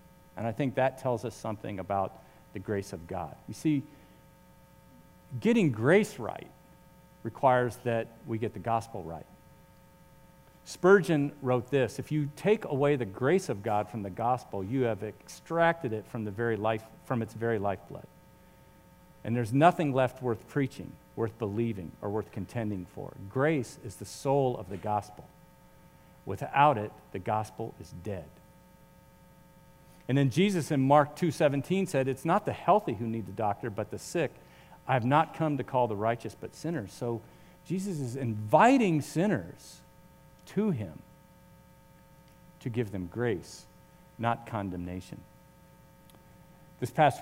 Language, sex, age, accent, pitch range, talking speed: English, male, 50-69, American, 110-150 Hz, 145 wpm